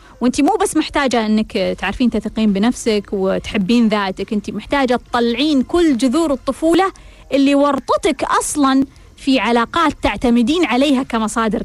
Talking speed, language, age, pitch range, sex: 125 wpm, Arabic, 20-39, 225-285 Hz, female